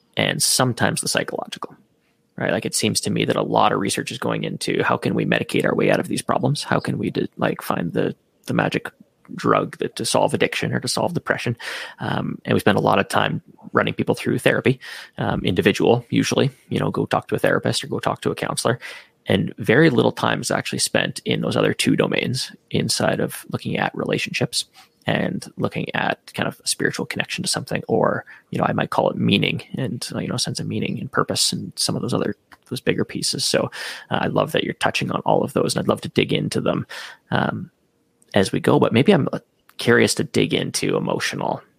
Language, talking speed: English, 225 wpm